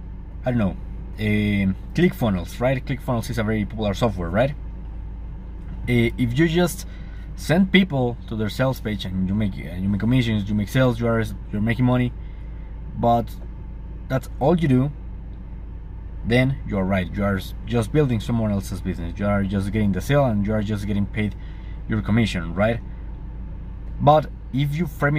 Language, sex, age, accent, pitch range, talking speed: English, male, 20-39, Mexican, 95-125 Hz, 180 wpm